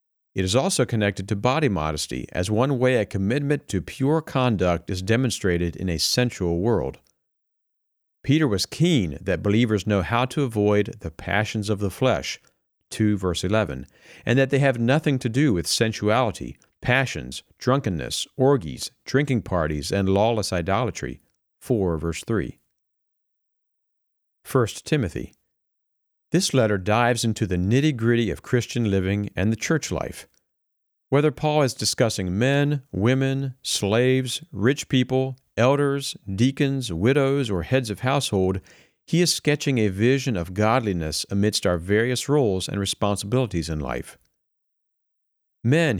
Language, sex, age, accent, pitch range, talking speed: English, male, 50-69, American, 95-130 Hz, 135 wpm